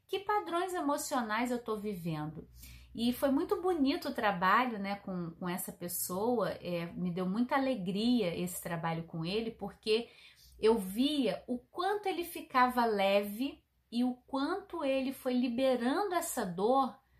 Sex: female